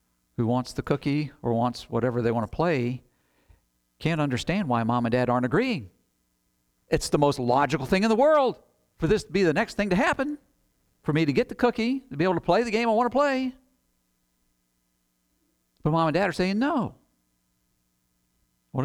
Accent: American